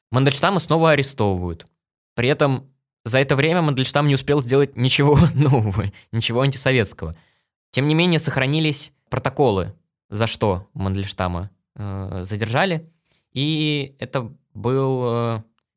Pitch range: 115-150 Hz